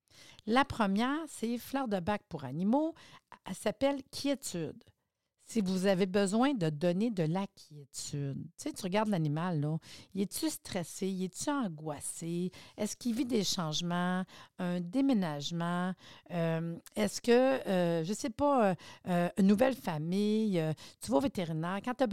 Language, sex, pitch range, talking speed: French, female, 175-240 Hz, 170 wpm